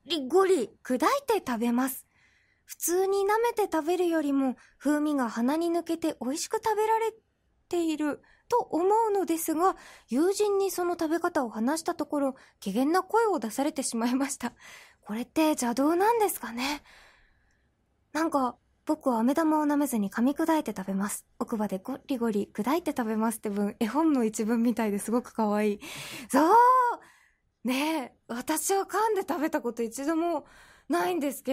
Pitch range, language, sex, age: 245-355 Hz, English, female, 20-39